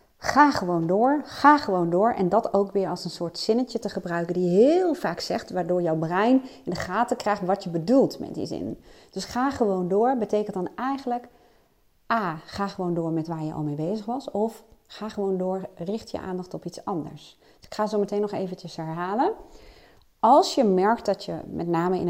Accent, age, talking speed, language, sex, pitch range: Dutch, 30-49, 205 wpm, Dutch, female, 175-245 Hz